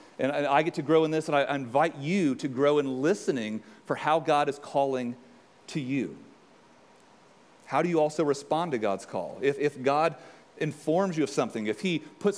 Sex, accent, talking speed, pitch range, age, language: male, American, 195 wpm, 135-165 Hz, 40-59, English